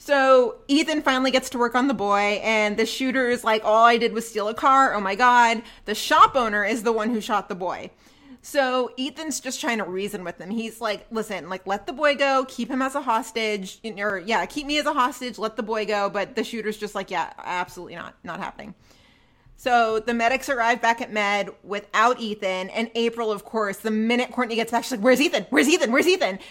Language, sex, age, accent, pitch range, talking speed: English, female, 30-49, American, 210-270 Hz, 230 wpm